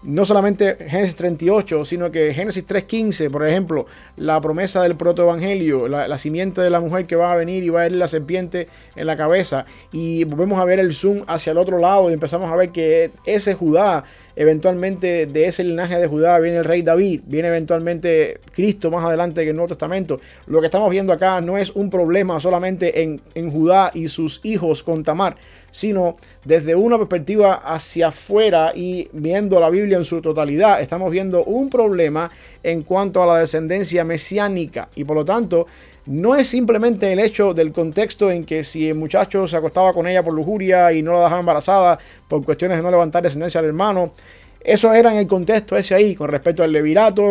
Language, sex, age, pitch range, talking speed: English, male, 30-49, 165-195 Hz, 200 wpm